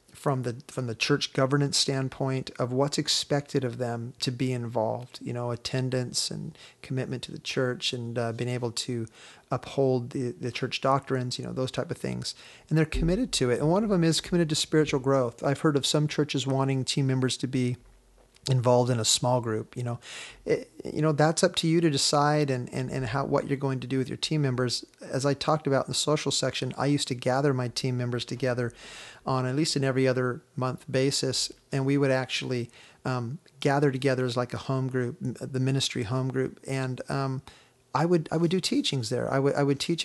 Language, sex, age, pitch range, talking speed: English, male, 40-59, 125-140 Hz, 220 wpm